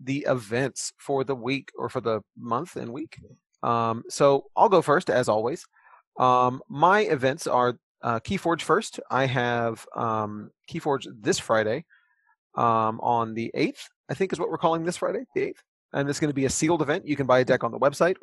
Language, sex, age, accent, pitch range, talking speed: English, male, 30-49, American, 120-145 Hz, 200 wpm